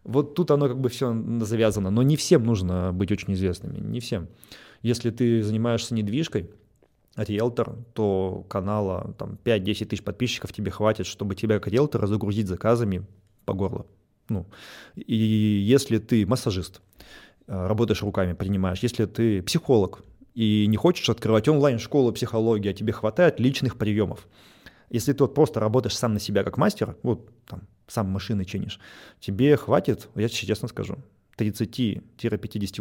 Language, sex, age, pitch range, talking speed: Russian, male, 20-39, 100-120 Hz, 150 wpm